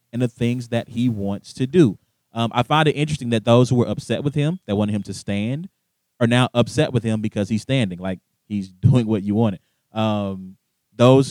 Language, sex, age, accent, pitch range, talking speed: English, male, 30-49, American, 110-145 Hz, 220 wpm